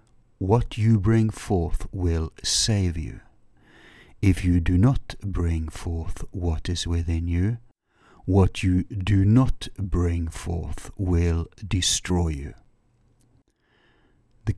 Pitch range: 85-110 Hz